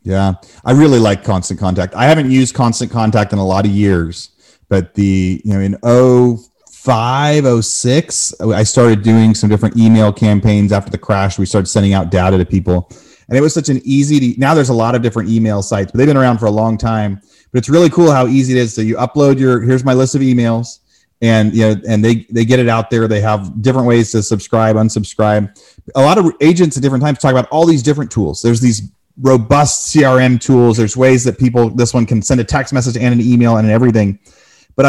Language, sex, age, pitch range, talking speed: English, male, 30-49, 110-135 Hz, 225 wpm